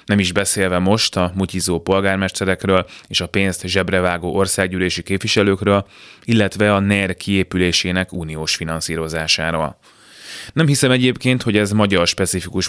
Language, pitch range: Hungarian, 90-105 Hz